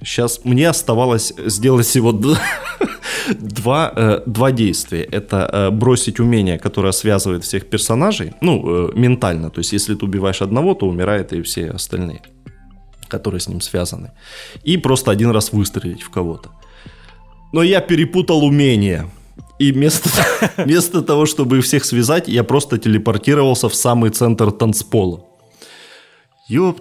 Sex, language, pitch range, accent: male, Ukrainian, 100-135 Hz, native